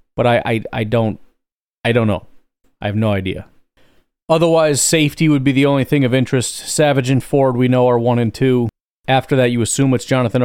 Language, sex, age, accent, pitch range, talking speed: English, male, 40-59, American, 100-130 Hz, 205 wpm